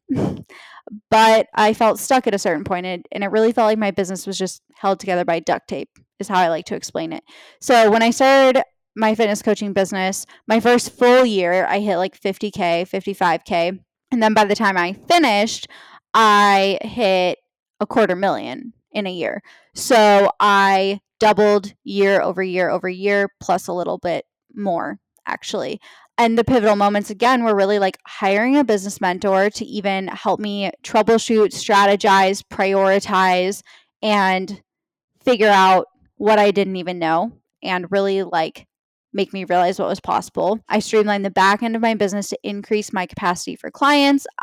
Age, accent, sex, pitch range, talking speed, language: 10-29, American, female, 190-220 Hz, 170 wpm, English